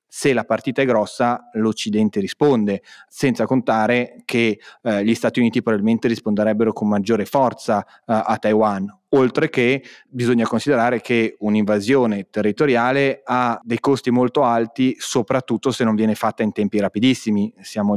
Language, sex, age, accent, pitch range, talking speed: Italian, male, 30-49, native, 110-120 Hz, 145 wpm